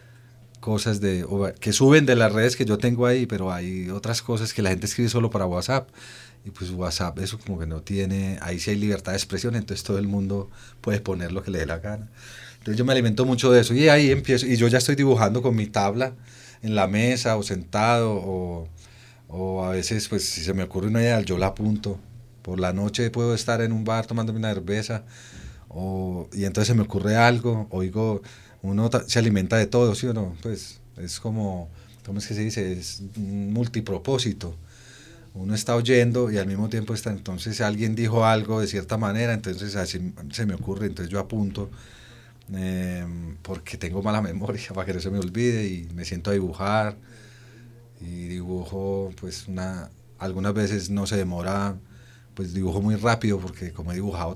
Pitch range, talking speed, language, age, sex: 95-115 Hz, 200 wpm, Spanish, 30-49, male